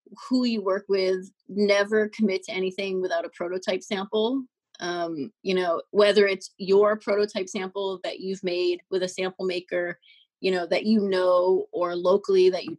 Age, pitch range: 30-49, 185-210 Hz